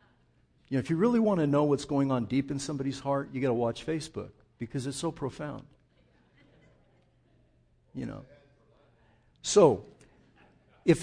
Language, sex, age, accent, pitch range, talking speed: English, male, 60-79, American, 115-150 Hz, 150 wpm